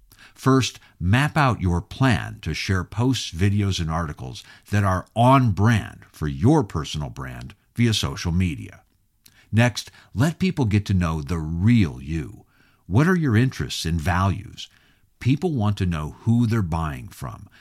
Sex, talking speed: male, 150 wpm